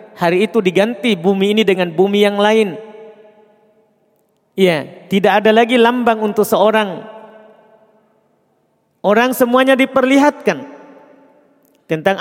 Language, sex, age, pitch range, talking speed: Indonesian, male, 40-59, 180-245 Hz, 100 wpm